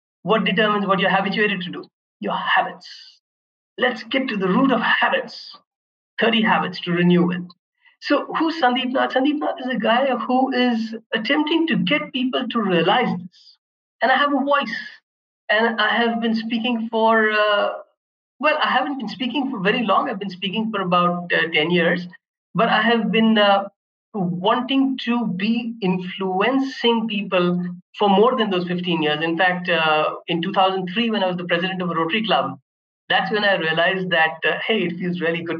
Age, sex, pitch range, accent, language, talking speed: 50-69, male, 175-230 Hz, Indian, English, 180 wpm